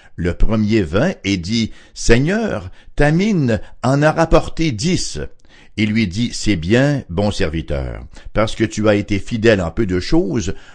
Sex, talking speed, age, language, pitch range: male, 160 wpm, 60-79, English, 95-125 Hz